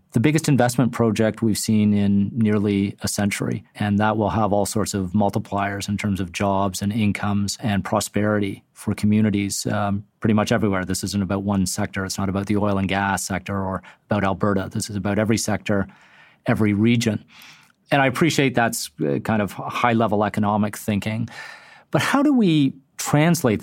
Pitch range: 100-115 Hz